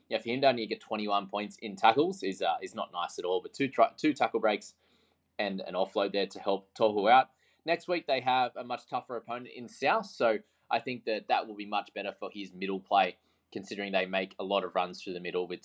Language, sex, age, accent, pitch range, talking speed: English, male, 20-39, Australian, 95-130 Hz, 250 wpm